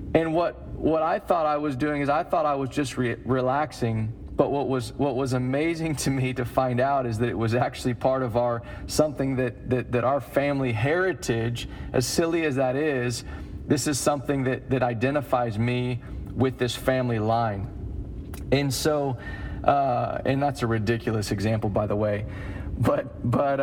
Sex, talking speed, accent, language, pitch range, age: male, 180 wpm, American, English, 105-130 Hz, 40-59